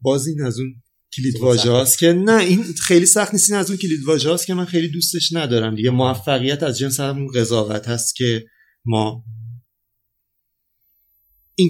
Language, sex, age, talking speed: Persian, male, 30-49, 140 wpm